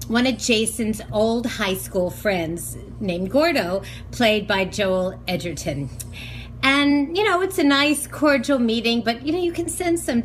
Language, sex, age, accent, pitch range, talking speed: English, female, 40-59, American, 185-275 Hz, 165 wpm